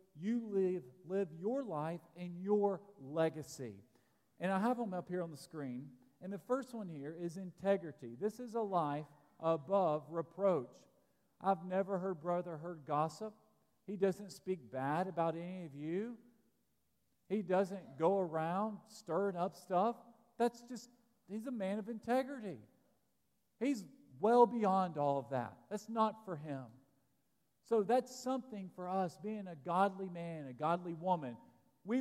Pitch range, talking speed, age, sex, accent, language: 155-200 Hz, 150 wpm, 50-69, male, American, English